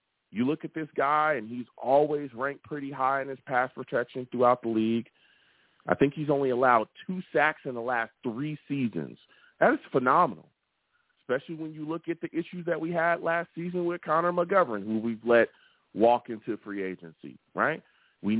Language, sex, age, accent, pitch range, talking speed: English, male, 40-59, American, 125-170 Hz, 185 wpm